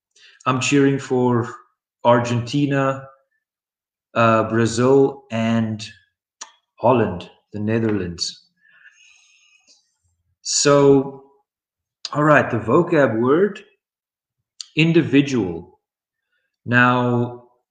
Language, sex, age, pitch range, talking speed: Polish, male, 40-59, 115-140 Hz, 60 wpm